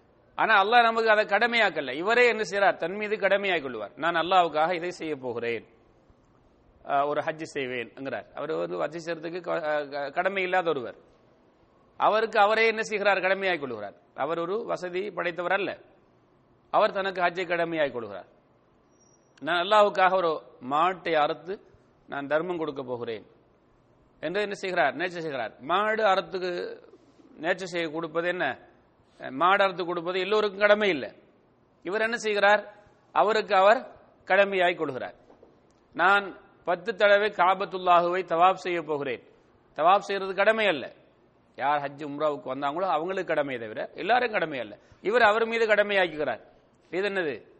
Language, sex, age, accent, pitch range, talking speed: English, male, 30-49, Indian, 145-200 Hz, 100 wpm